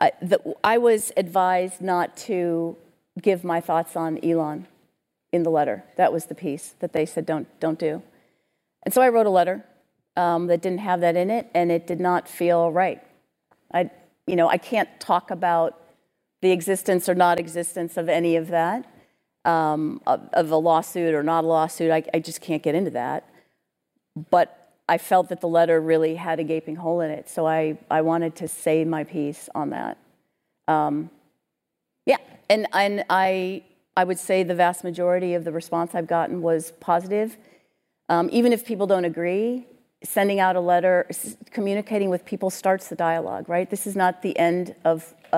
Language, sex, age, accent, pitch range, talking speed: English, female, 50-69, American, 160-185 Hz, 190 wpm